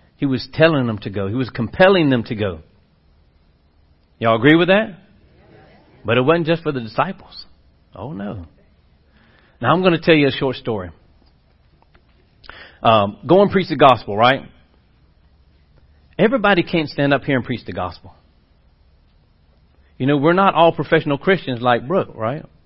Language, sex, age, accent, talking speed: English, male, 40-59, American, 155 wpm